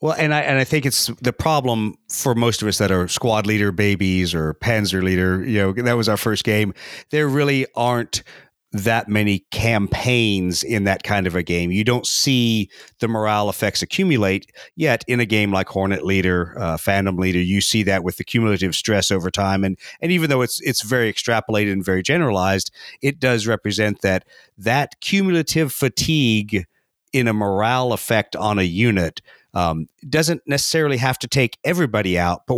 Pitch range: 95-125 Hz